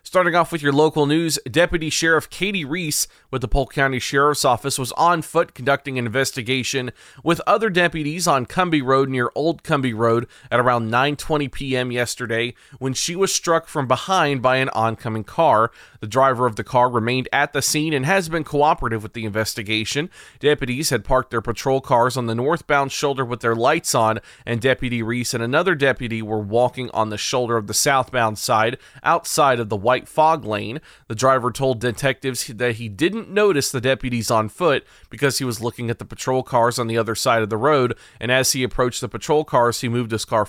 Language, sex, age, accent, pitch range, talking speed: English, male, 30-49, American, 120-155 Hz, 200 wpm